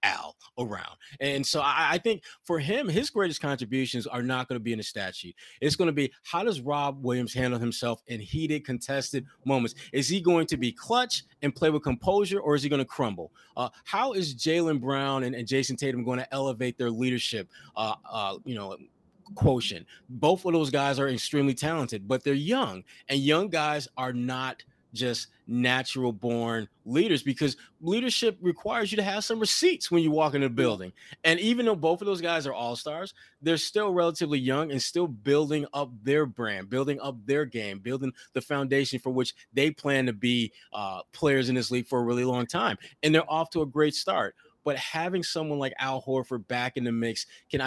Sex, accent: male, American